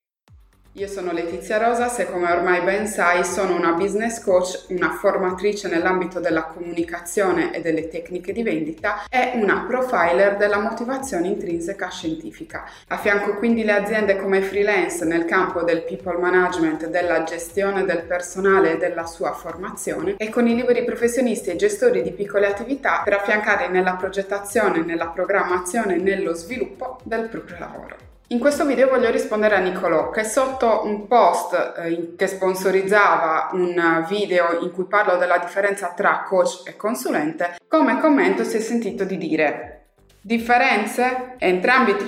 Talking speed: 150 wpm